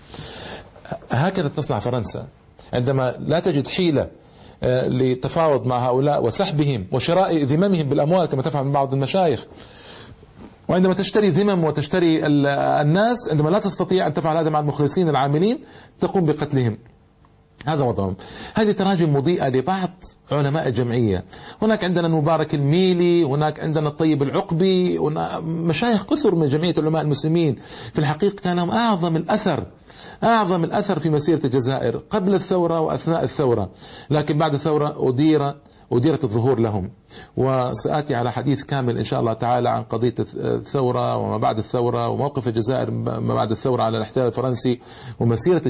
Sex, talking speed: male, 135 wpm